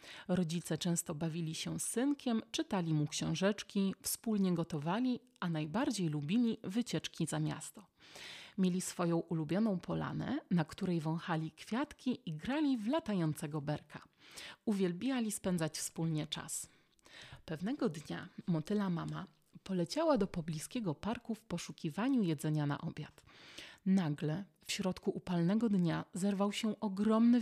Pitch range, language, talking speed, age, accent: 165-200 Hz, Polish, 120 wpm, 30-49, native